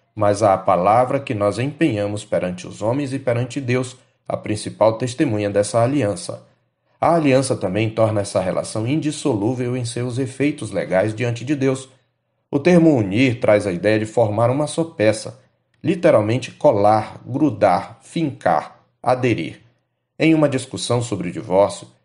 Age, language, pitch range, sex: 40-59, Portuguese, 105-145 Hz, male